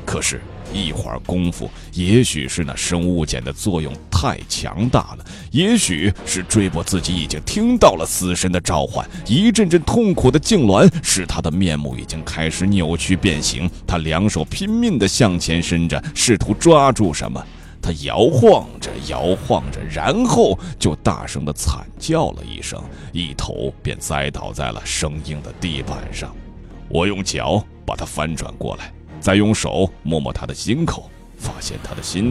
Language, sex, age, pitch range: Chinese, male, 30-49, 75-95 Hz